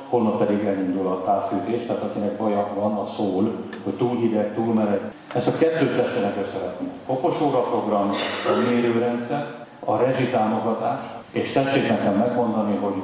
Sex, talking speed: male, 150 wpm